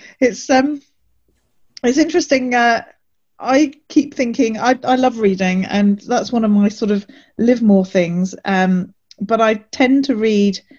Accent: British